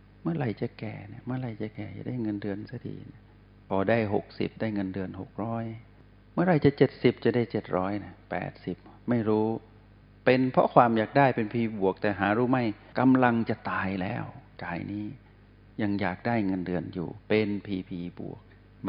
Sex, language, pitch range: male, Thai, 100-115 Hz